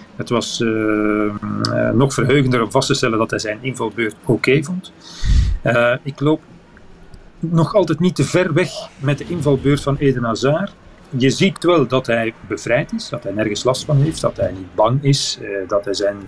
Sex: male